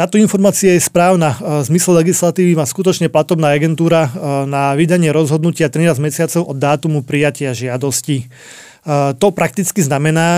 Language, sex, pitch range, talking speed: Slovak, male, 155-180 Hz, 135 wpm